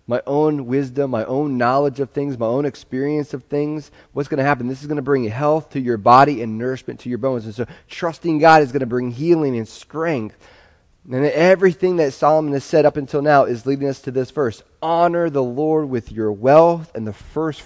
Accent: American